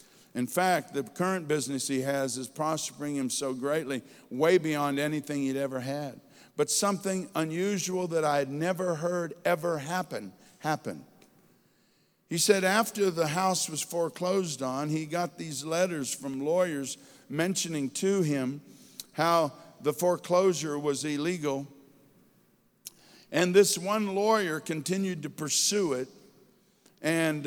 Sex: male